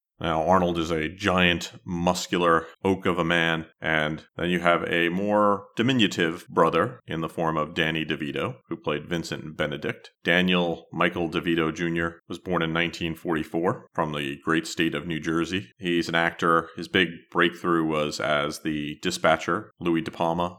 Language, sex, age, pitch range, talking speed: English, male, 40-59, 80-90 Hz, 165 wpm